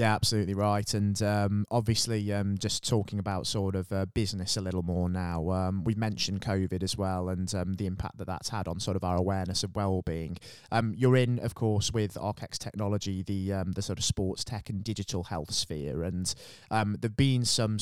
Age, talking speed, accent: 20-39, 210 wpm, British